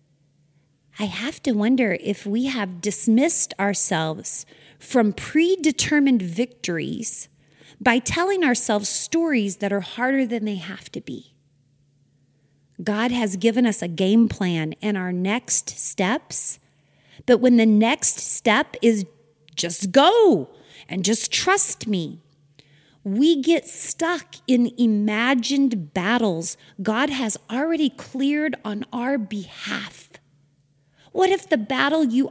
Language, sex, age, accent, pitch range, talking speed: English, female, 30-49, American, 165-270 Hz, 120 wpm